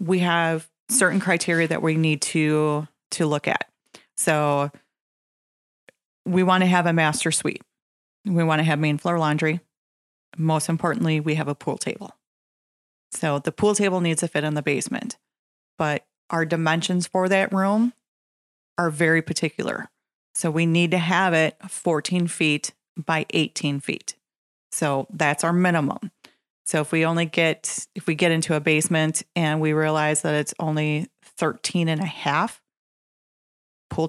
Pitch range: 150-175 Hz